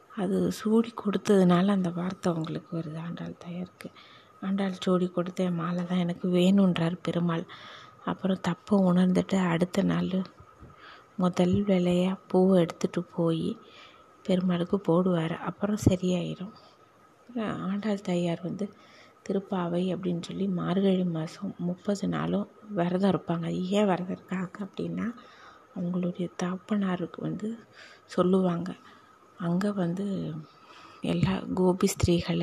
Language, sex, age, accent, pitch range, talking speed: Tamil, female, 20-39, native, 175-200 Hz, 105 wpm